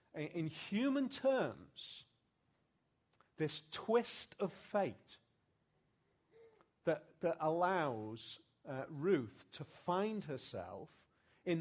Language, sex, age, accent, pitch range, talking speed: English, male, 40-59, British, 125-175 Hz, 85 wpm